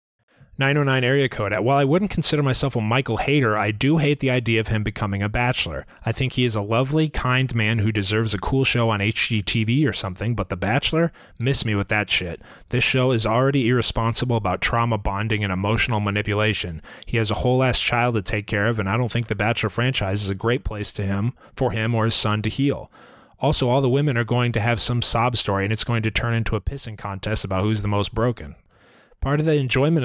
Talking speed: 235 wpm